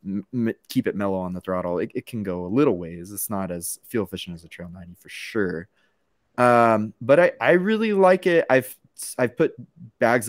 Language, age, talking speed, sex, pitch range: English, 20-39, 205 wpm, male, 90-120 Hz